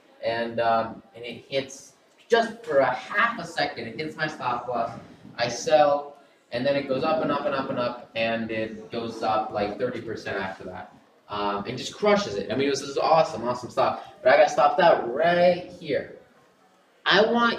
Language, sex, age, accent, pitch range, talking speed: English, male, 20-39, American, 130-195 Hz, 200 wpm